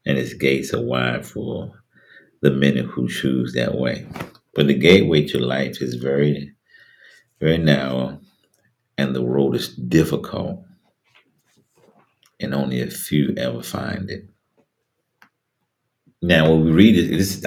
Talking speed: 130 wpm